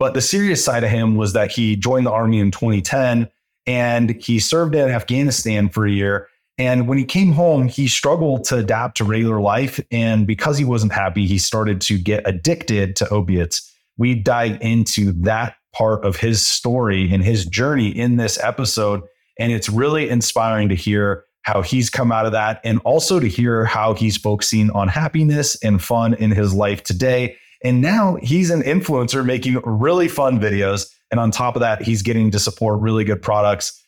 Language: English